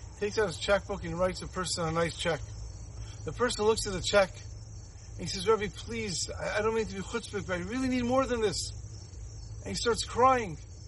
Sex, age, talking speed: male, 40-59, 220 wpm